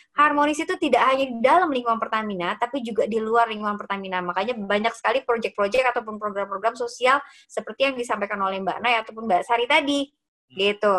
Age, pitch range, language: 20-39, 195-250 Hz, Indonesian